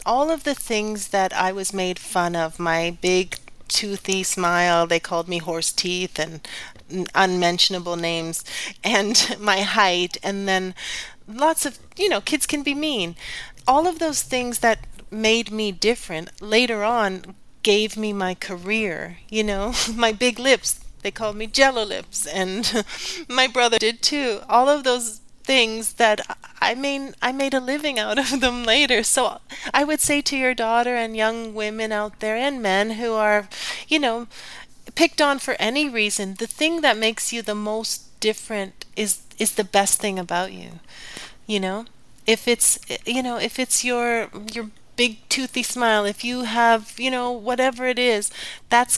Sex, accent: female, American